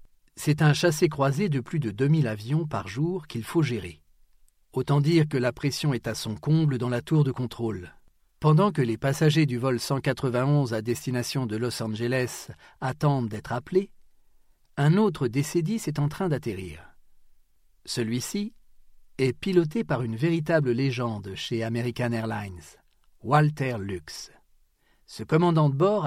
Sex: male